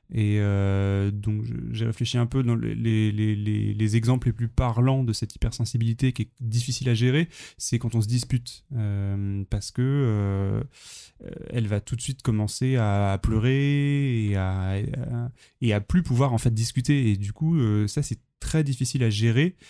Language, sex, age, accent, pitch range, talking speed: French, male, 20-39, French, 105-125 Hz, 190 wpm